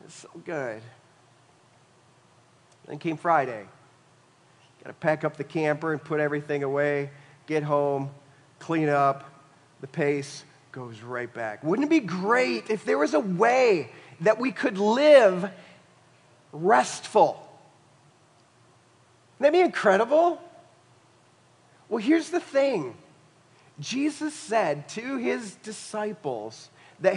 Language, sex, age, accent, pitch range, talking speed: English, male, 40-59, American, 145-225 Hz, 115 wpm